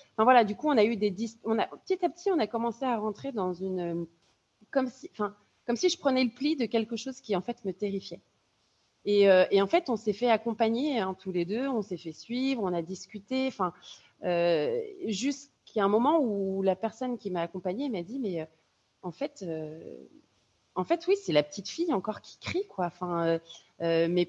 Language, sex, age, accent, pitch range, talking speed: French, female, 30-49, French, 185-260 Hz, 225 wpm